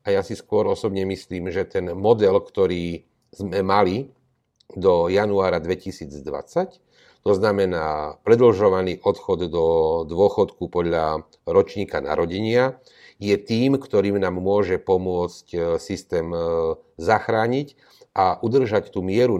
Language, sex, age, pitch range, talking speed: Slovak, male, 40-59, 90-125 Hz, 110 wpm